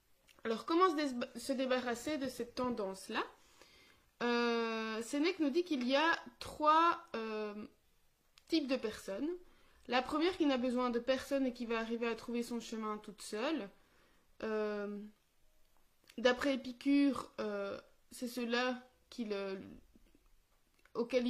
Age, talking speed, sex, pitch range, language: 20-39, 120 wpm, female, 215-265 Hz, French